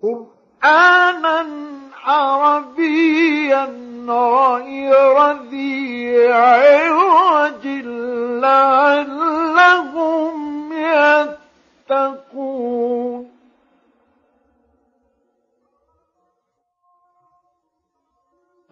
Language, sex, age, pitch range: Arabic, male, 50-69, 260-320 Hz